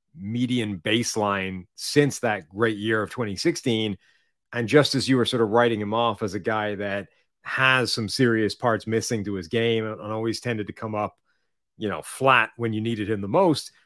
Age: 30-49